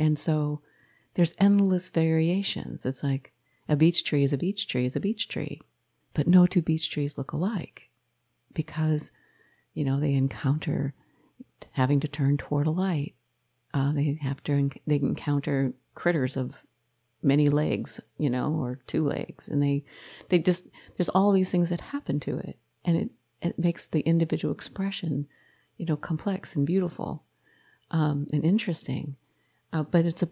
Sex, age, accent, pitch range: female, 50-69, American, 140-175 Hz